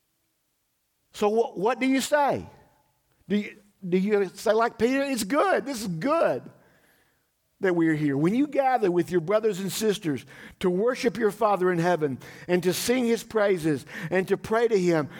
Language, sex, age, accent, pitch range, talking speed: English, male, 50-69, American, 170-225 Hz, 175 wpm